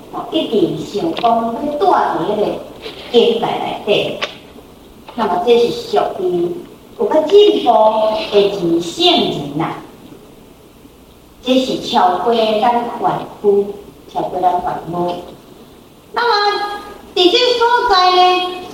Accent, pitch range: American, 230-385 Hz